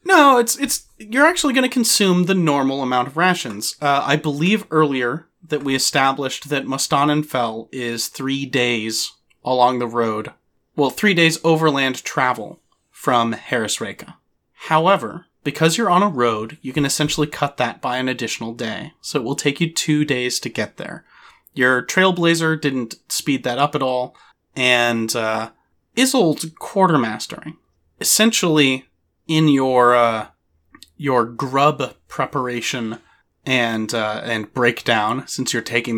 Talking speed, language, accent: 140 wpm, English, American